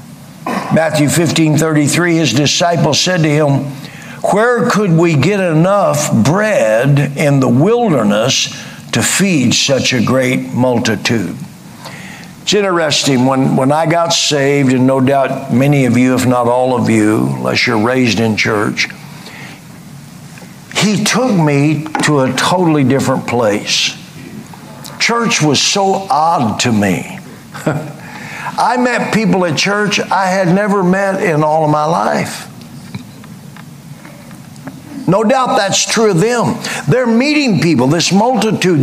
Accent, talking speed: American, 130 wpm